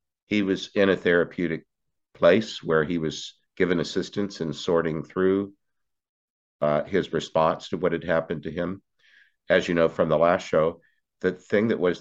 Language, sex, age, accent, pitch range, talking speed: English, male, 50-69, American, 80-95 Hz, 170 wpm